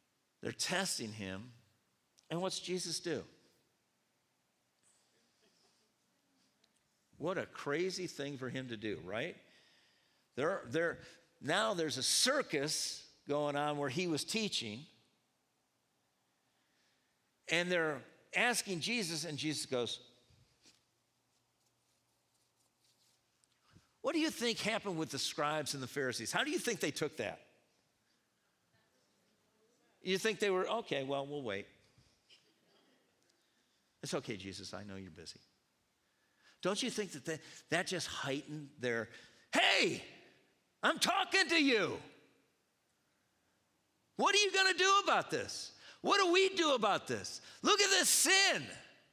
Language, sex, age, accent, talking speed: English, male, 50-69, American, 120 wpm